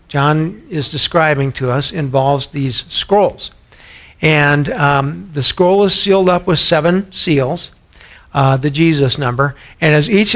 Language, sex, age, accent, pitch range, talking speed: English, male, 50-69, American, 140-175 Hz, 145 wpm